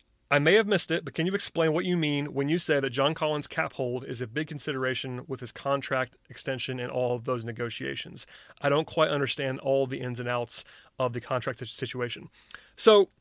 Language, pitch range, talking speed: English, 130-155 Hz, 215 wpm